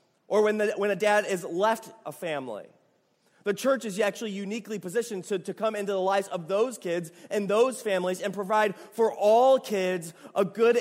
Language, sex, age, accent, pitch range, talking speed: English, male, 30-49, American, 165-210 Hz, 195 wpm